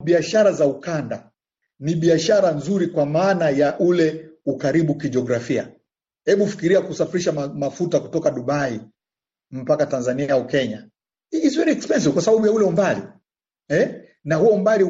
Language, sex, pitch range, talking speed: Swahili, male, 150-190 Hz, 135 wpm